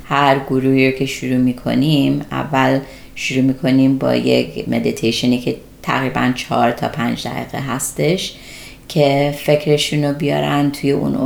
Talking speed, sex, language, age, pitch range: 135 wpm, female, Persian, 30-49, 130-155 Hz